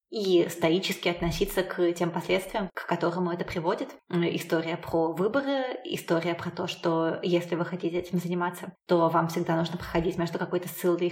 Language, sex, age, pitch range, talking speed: Russian, female, 20-39, 170-195 Hz, 160 wpm